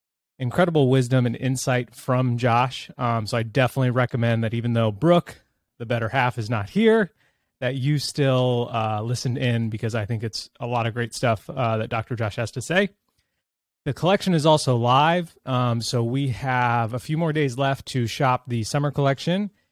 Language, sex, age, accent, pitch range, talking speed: English, male, 20-39, American, 115-140 Hz, 190 wpm